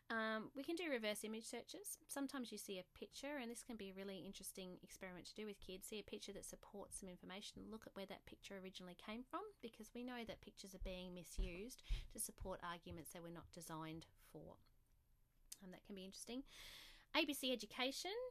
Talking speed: 205 wpm